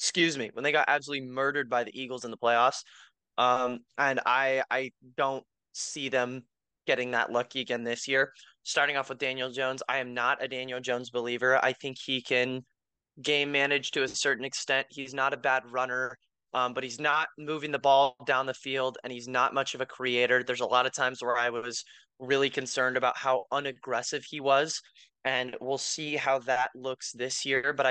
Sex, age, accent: male, 20-39, American